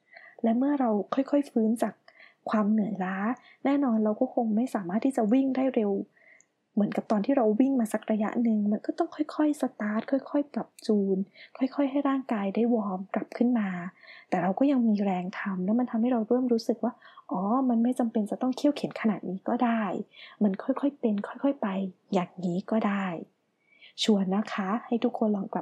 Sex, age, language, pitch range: female, 20-39, Thai, 200-245 Hz